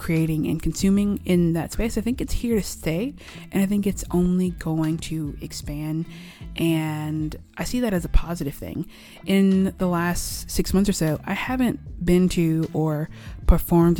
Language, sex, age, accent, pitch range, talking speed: English, female, 20-39, American, 150-185 Hz, 175 wpm